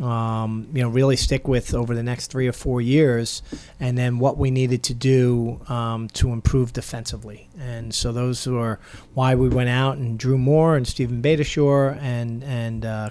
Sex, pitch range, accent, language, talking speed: male, 120-135 Hz, American, English, 190 wpm